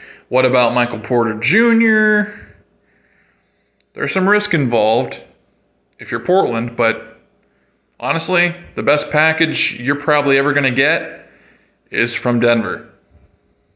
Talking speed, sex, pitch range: 115 wpm, male, 115-145 Hz